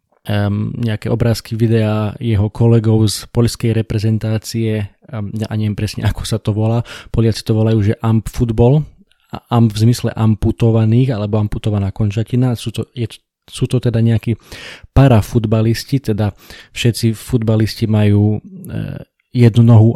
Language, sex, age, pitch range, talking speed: Slovak, male, 20-39, 110-120 Hz, 130 wpm